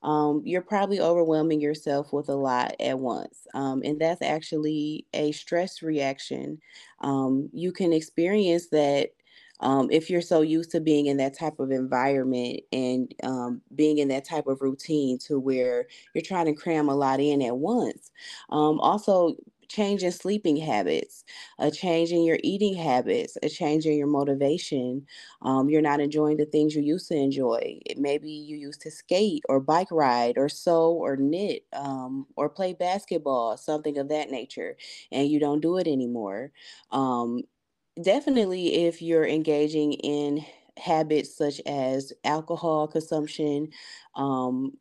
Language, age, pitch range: English, 20-39, 135-165 Hz